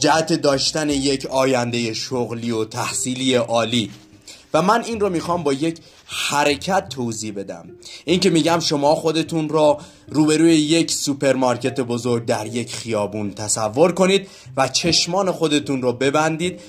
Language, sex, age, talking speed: Persian, male, 30-49, 135 wpm